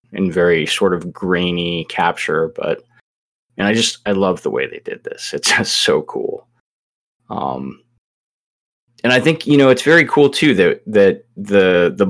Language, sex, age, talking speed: English, male, 20-39, 175 wpm